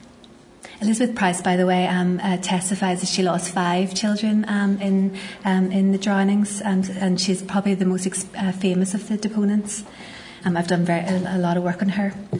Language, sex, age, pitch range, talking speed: English, female, 30-49, 190-215 Hz, 200 wpm